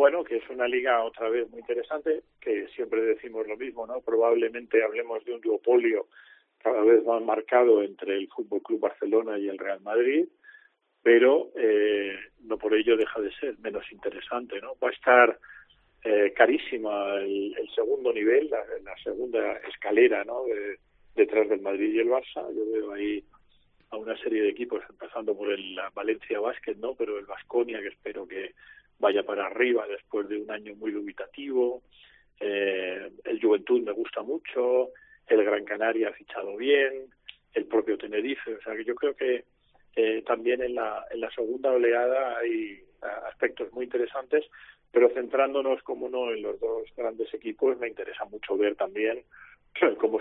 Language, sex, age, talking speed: Spanish, male, 40-59, 165 wpm